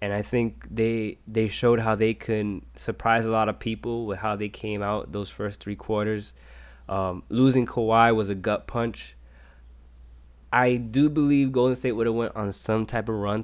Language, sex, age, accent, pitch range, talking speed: English, male, 20-39, American, 95-110 Hz, 190 wpm